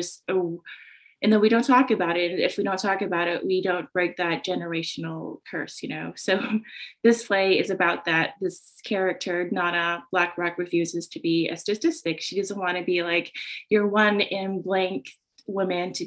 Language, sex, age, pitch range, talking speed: English, female, 20-39, 170-205 Hz, 185 wpm